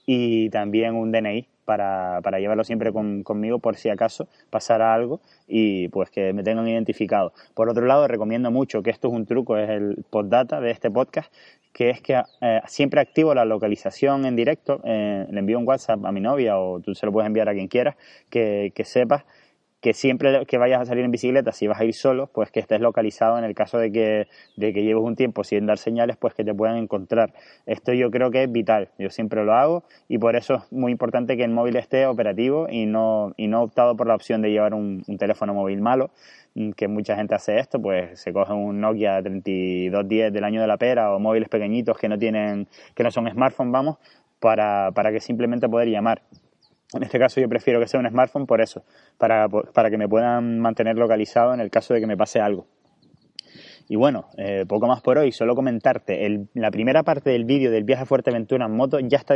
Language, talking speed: Spanish, 225 wpm